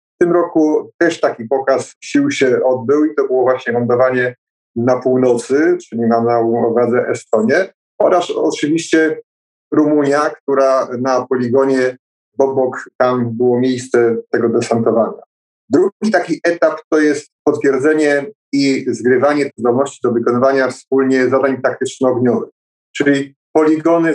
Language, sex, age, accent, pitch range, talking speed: Polish, male, 30-49, native, 125-155 Hz, 120 wpm